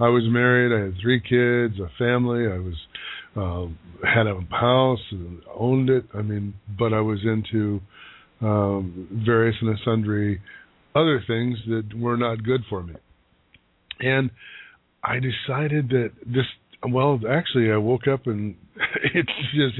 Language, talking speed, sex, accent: English, 150 wpm, male, American